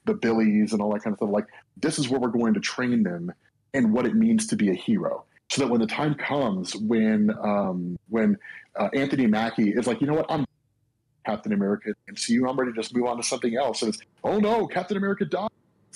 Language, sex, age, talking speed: English, male, 30-49, 250 wpm